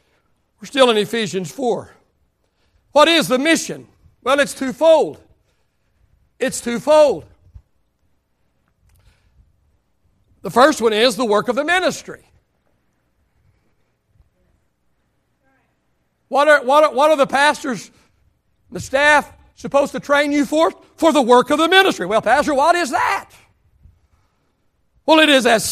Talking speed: 120 wpm